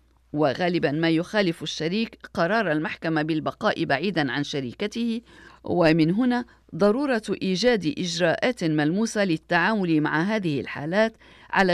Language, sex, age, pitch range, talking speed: Arabic, female, 50-69, 160-215 Hz, 105 wpm